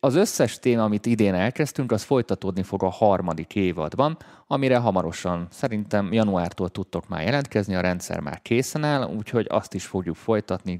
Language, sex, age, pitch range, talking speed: Hungarian, male, 30-49, 90-110 Hz, 160 wpm